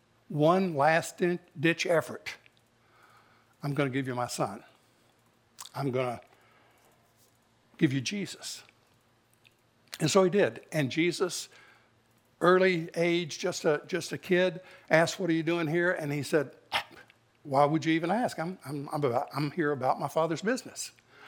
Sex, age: male, 60-79